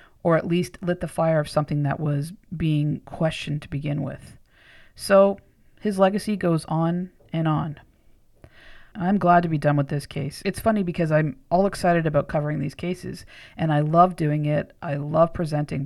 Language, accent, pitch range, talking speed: English, American, 150-185 Hz, 180 wpm